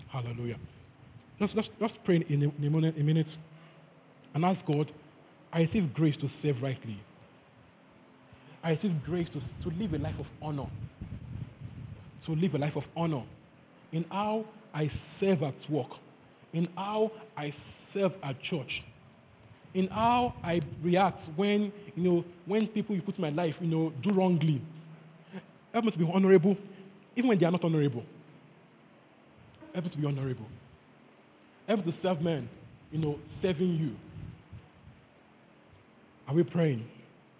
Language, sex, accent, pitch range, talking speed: English, male, Nigerian, 140-190 Hz, 150 wpm